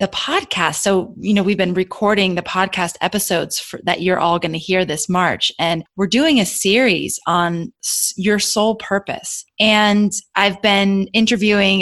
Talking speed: 160 wpm